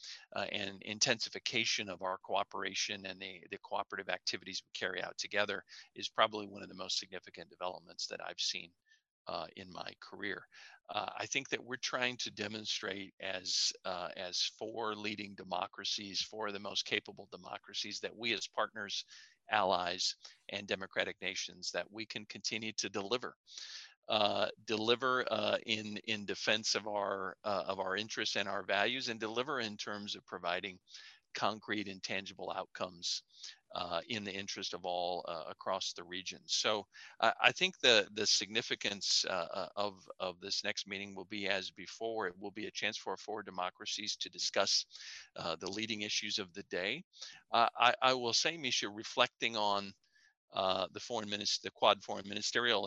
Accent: American